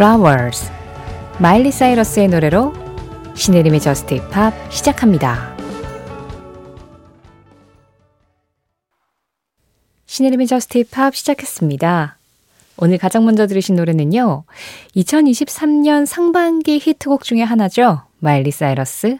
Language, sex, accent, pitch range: Korean, female, native, 145-230 Hz